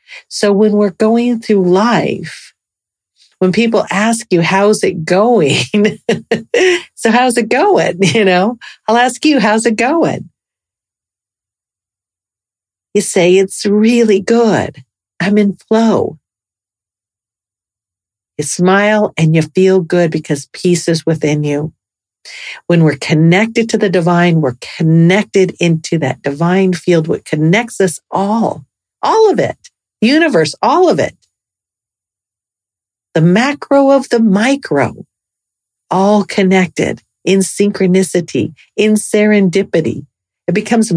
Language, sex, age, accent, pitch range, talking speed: English, female, 50-69, American, 145-210 Hz, 115 wpm